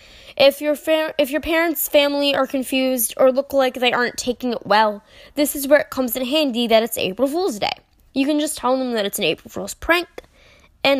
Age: 10-29